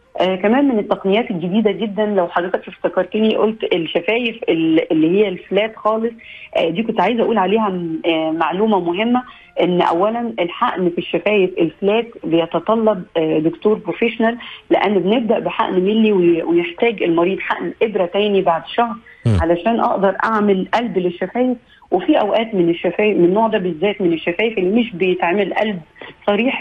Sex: female